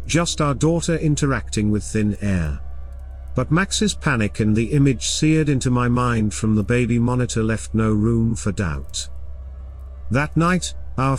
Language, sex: English, male